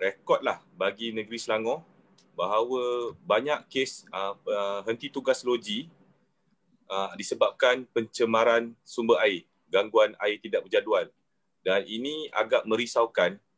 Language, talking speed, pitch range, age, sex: Malay, 110 wpm, 120-190 Hz, 30-49, male